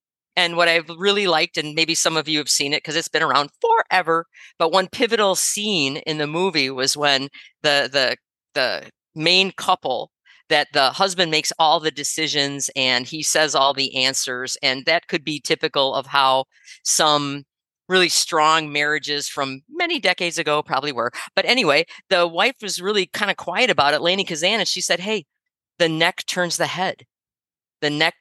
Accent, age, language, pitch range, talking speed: American, 40-59, English, 140-185 Hz, 185 wpm